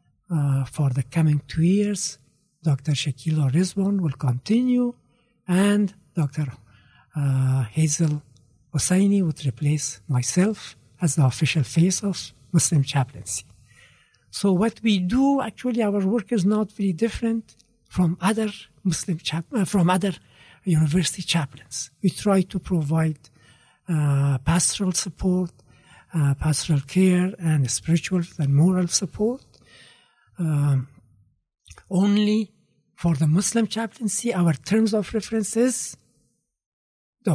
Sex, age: male, 60-79